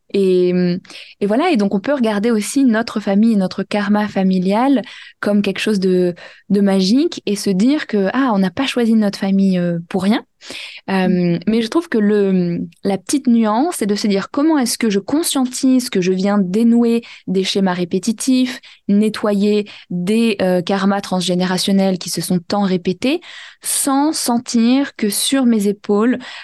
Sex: female